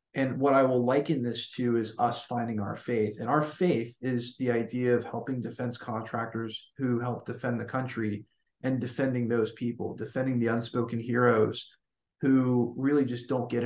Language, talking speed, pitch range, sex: English, 175 wpm, 115-135 Hz, male